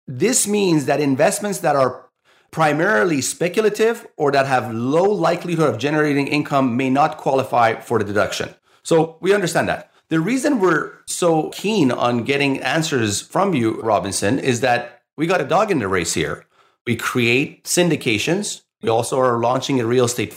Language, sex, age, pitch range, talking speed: English, male, 30-49, 105-150 Hz, 170 wpm